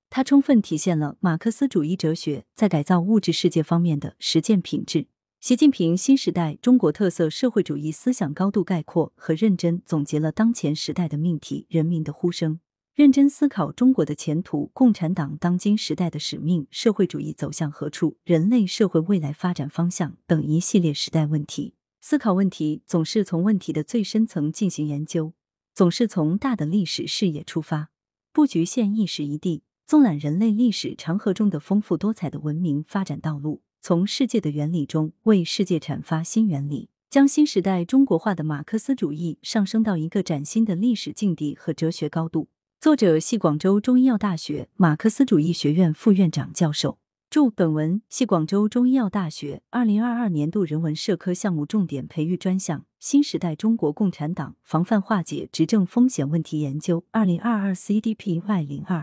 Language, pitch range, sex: Chinese, 155-215 Hz, female